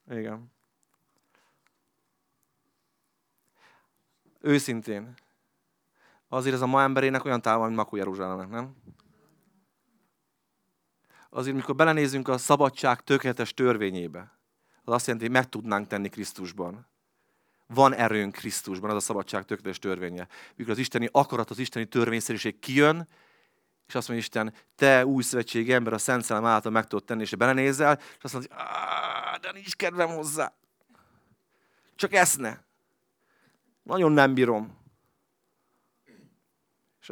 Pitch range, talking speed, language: 110-140 Hz, 115 wpm, Hungarian